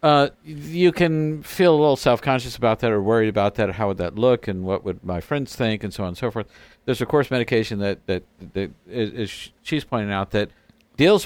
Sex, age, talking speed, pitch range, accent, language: male, 50-69, 230 wpm, 110-145 Hz, American, English